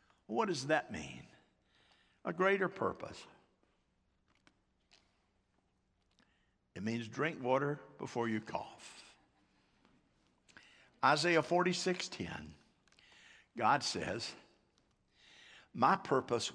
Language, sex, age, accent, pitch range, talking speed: English, male, 60-79, American, 95-150 Hz, 75 wpm